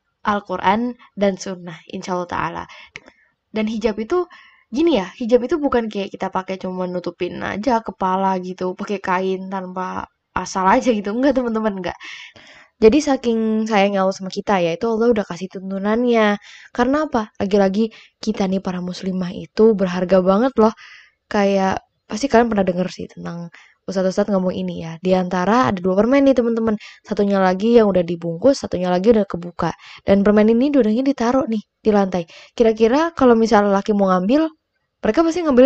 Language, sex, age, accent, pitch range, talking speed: Indonesian, female, 10-29, native, 185-240 Hz, 165 wpm